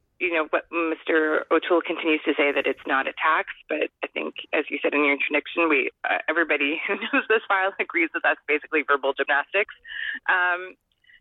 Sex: female